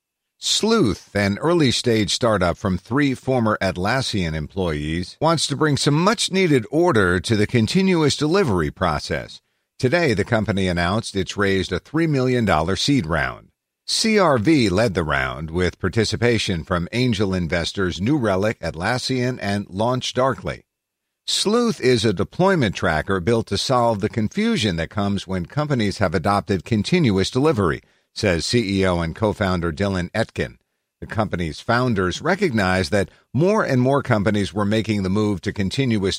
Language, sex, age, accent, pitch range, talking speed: English, male, 50-69, American, 95-125 Hz, 140 wpm